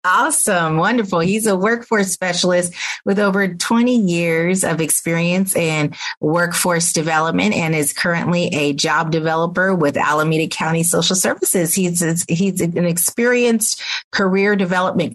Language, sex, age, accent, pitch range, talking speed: English, female, 30-49, American, 155-200 Hz, 130 wpm